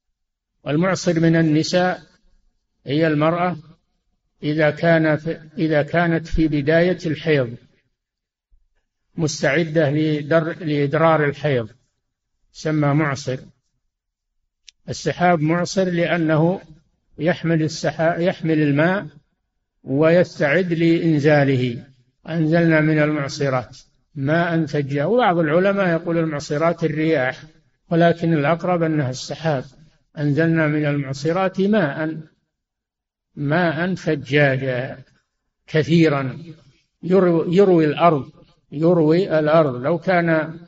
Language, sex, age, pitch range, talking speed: Arabic, male, 60-79, 145-170 Hz, 80 wpm